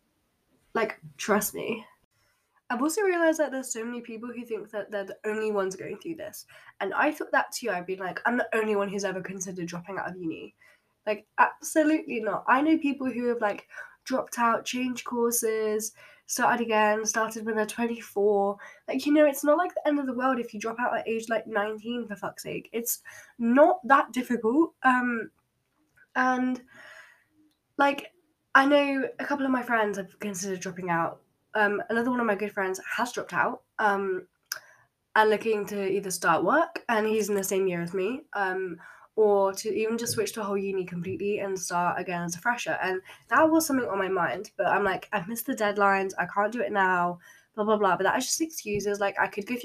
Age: 10-29